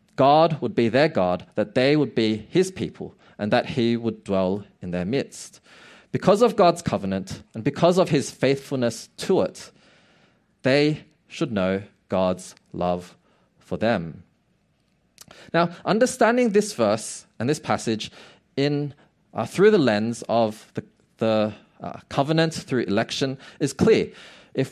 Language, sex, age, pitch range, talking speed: English, male, 20-39, 110-165 Hz, 150 wpm